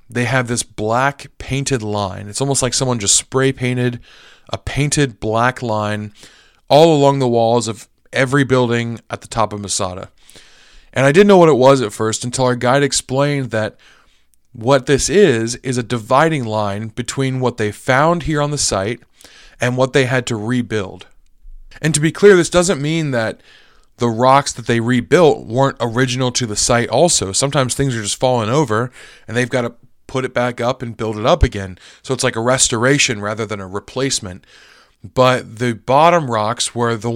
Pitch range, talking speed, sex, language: 110-135 Hz, 190 wpm, male, English